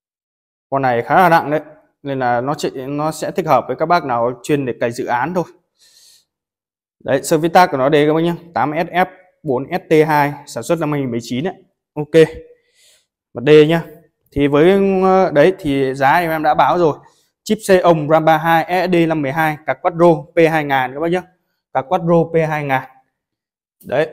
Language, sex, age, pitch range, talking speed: Vietnamese, male, 20-39, 135-175 Hz, 175 wpm